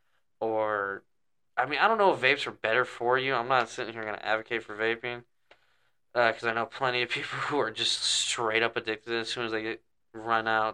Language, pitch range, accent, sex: English, 110-125 Hz, American, male